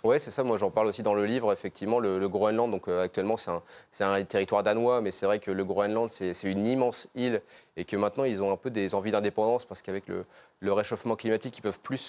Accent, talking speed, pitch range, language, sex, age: French, 265 wpm, 95-110 Hz, French, male, 20-39